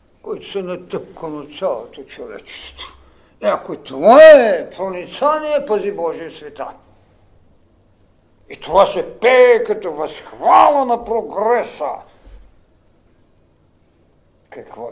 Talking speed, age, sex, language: 90 wpm, 60-79, male, Bulgarian